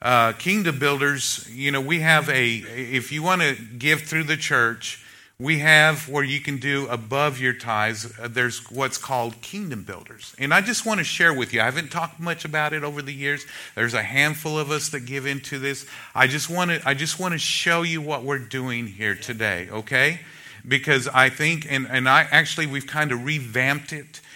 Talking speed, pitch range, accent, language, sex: 210 wpm, 115-145 Hz, American, English, male